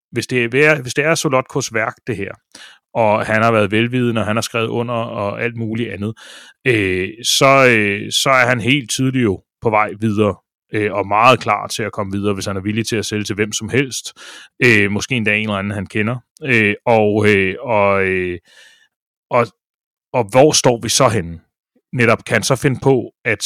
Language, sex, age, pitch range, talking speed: Danish, male, 30-49, 105-125 Hz, 200 wpm